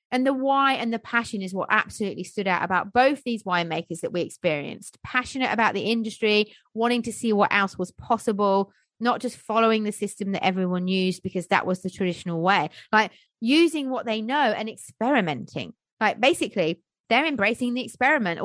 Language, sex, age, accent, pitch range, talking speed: English, female, 30-49, British, 200-255 Hz, 180 wpm